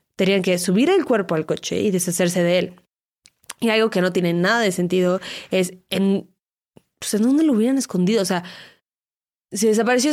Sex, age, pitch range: female, 20-39, 175-210 Hz